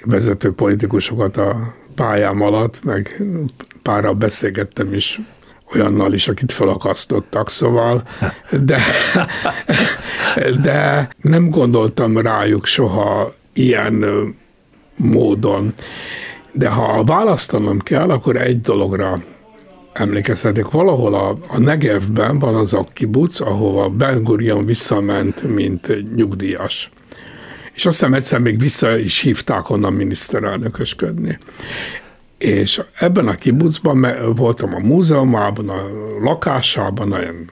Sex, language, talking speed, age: male, Hungarian, 100 wpm, 60-79